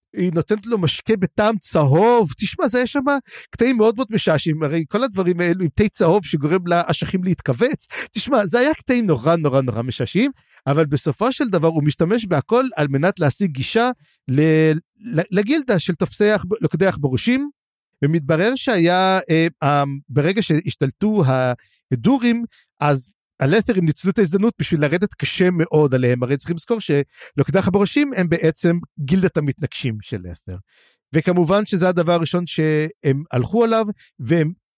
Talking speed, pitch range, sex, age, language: 145 wpm, 150-205 Hz, male, 50-69, Hebrew